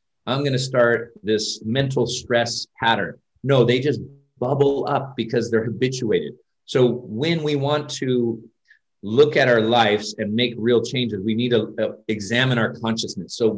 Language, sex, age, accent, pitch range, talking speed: English, male, 40-59, American, 115-140 Hz, 160 wpm